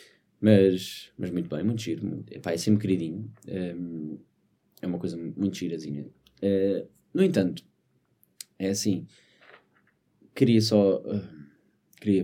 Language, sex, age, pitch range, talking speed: Portuguese, male, 20-39, 95-120 Hz, 125 wpm